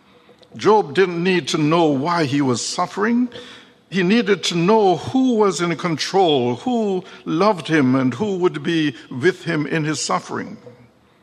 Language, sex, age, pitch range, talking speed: English, male, 60-79, 125-170 Hz, 155 wpm